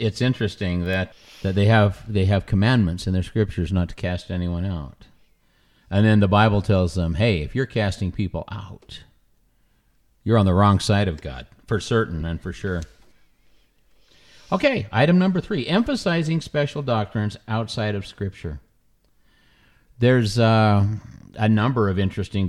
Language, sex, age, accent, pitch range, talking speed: English, male, 50-69, American, 100-140 Hz, 150 wpm